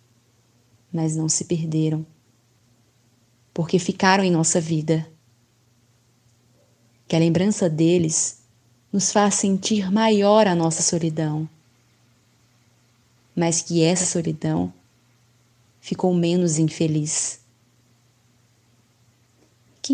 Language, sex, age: Portuguese, female, 20-39